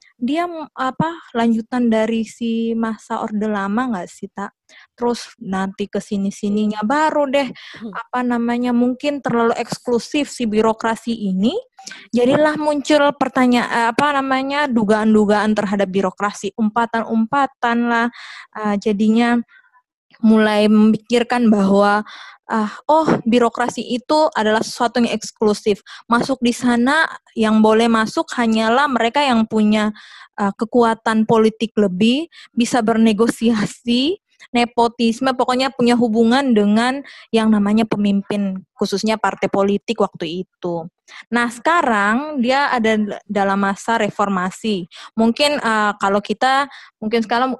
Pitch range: 210-245 Hz